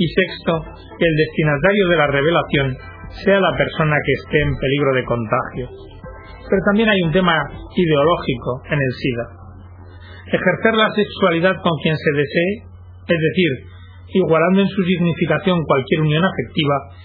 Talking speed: 150 wpm